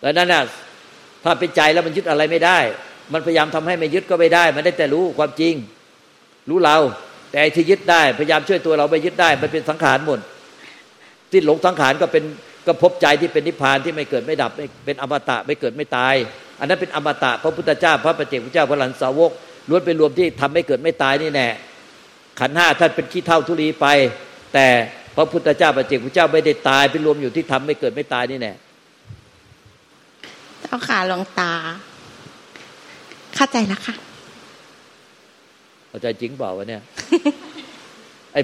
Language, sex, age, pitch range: Thai, male, 60-79, 135-170 Hz